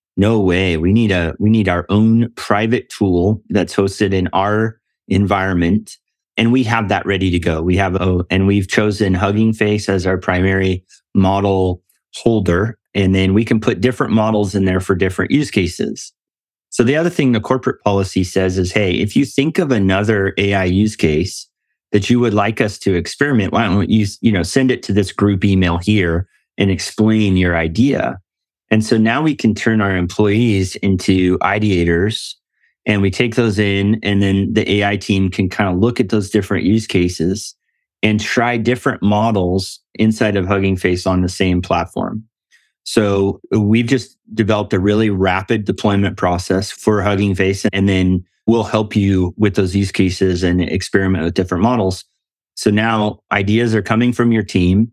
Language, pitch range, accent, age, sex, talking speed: English, 95-110 Hz, American, 30-49, male, 180 wpm